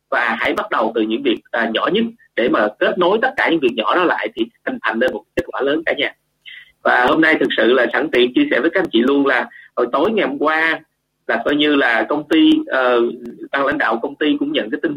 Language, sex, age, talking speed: Vietnamese, male, 30-49, 275 wpm